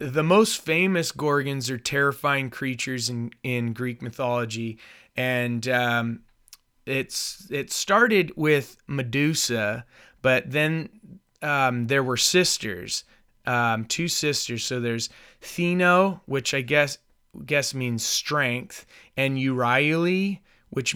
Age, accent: 30-49, American